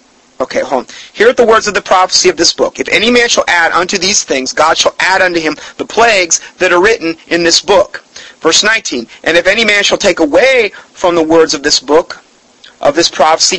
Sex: male